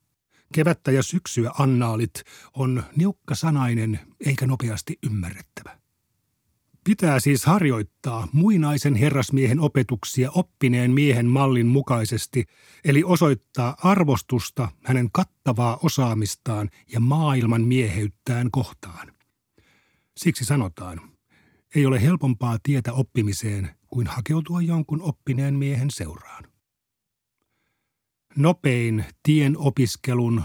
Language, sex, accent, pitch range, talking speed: Finnish, male, native, 115-145 Hz, 90 wpm